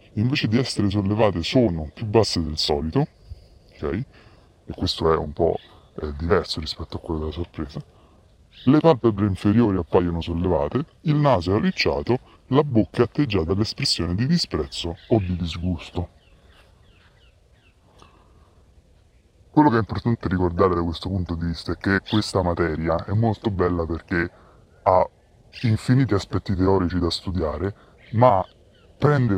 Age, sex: 30-49, female